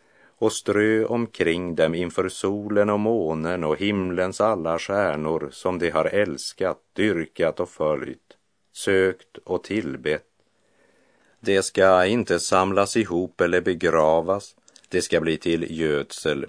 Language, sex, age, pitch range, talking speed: Portuguese, male, 50-69, 80-110 Hz, 125 wpm